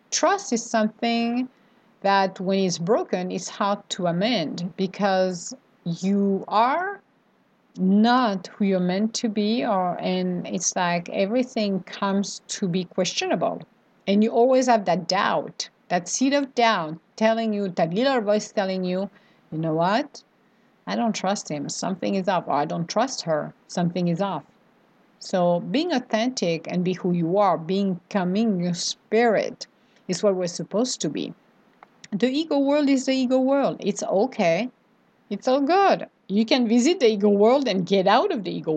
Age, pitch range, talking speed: 50-69, 195-255 Hz, 165 wpm